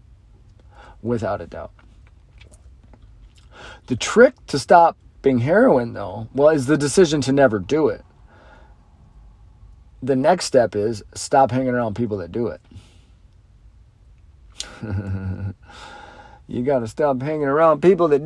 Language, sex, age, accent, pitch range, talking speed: English, male, 40-59, American, 100-135 Hz, 120 wpm